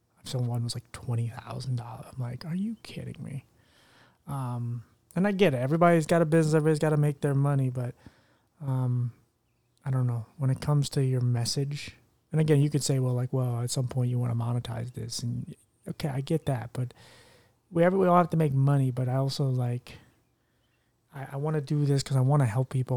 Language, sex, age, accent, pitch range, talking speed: English, male, 30-49, American, 120-145 Hz, 220 wpm